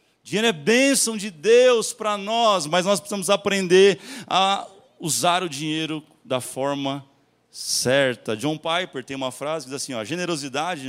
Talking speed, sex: 155 wpm, male